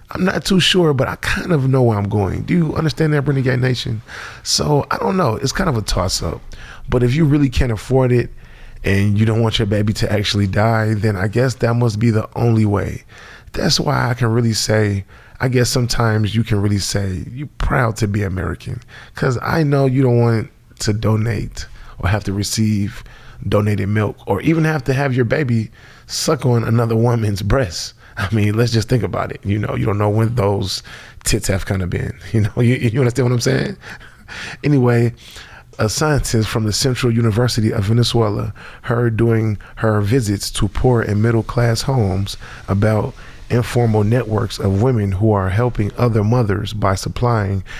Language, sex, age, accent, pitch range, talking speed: English, male, 20-39, American, 105-125 Hz, 190 wpm